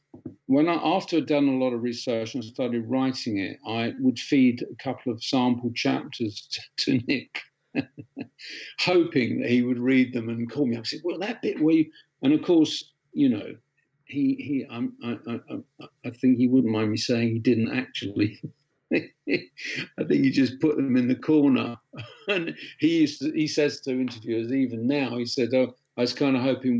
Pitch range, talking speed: 120-145 Hz, 200 wpm